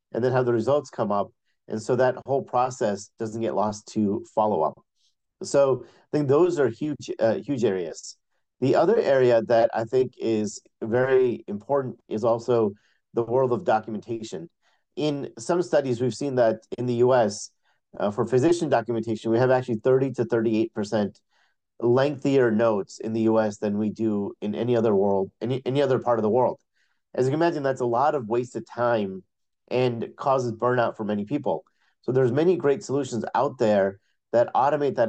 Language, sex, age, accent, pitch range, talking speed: English, male, 40-59, American, 110-135 Hz, 180 wpm